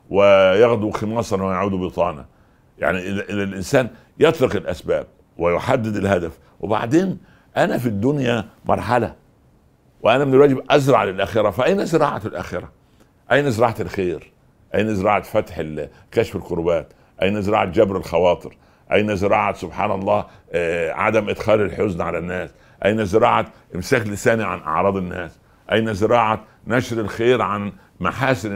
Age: 60-79